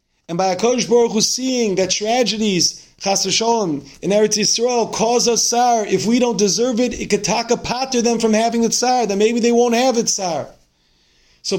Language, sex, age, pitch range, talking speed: English, male, 40-59, 190-235 Hz, 200 wpm